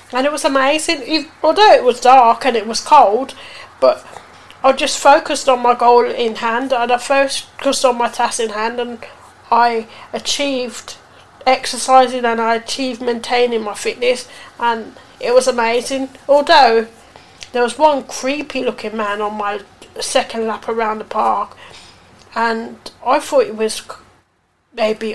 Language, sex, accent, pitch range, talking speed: English, female, British, 225-265 Hz, 150 wpm